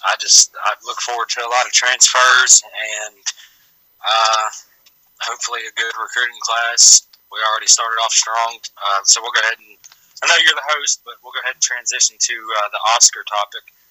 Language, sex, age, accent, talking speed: English, male, 20-39, American, 190 wpm